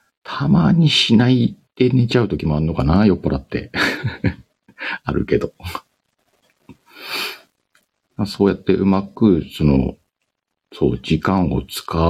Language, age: Japanese, 50-69